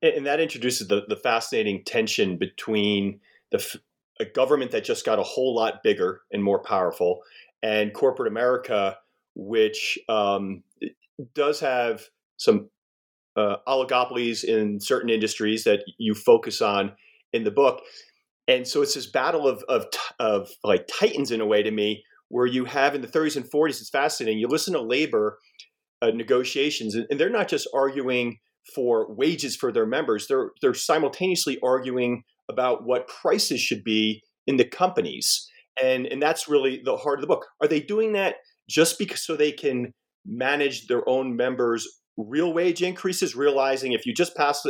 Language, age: English, 40-59